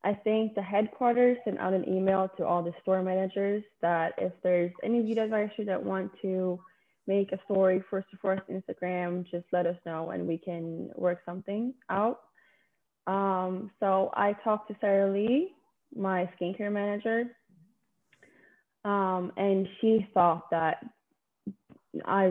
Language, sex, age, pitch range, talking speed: English, female, 20-39, 180-215 Hz, 145 wpm